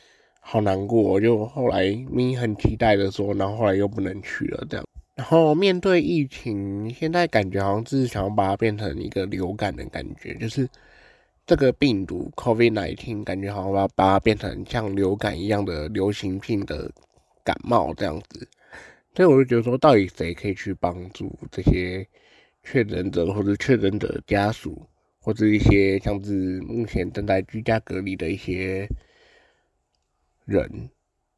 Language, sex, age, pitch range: Chinese, male, 20-39, 95-120 Hz